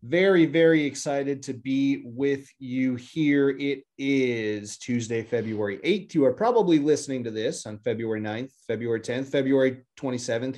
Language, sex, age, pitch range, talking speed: English, male, 30-49, 130-160 Hz, 145 wpm